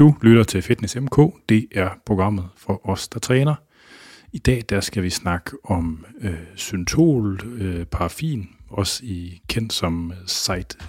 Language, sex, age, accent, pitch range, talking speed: Danish, male, 30-49, native, 90-115 Hz, 155 wpm